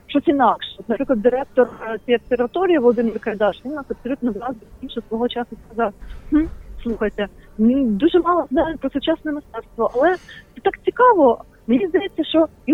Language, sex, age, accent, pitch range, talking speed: Ukrainian, female, 30-49, native, 230-285 Hz, 160 wpm